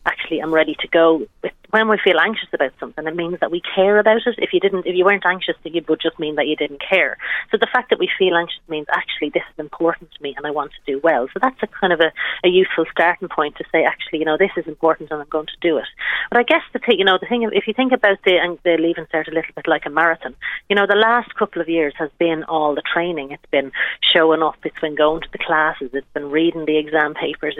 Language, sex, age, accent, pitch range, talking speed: English, female, 30-49, Irish, 155-185 Hz, 280 wpm